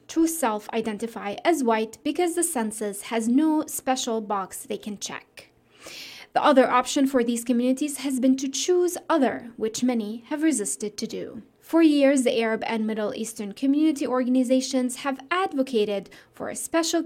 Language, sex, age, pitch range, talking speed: English, female, 20-39, 220-275 Hz, 160 wpm